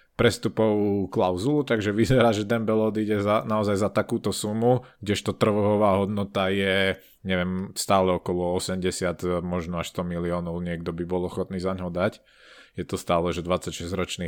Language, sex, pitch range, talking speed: Slovak, male, 90-110 Hz, 150 wpm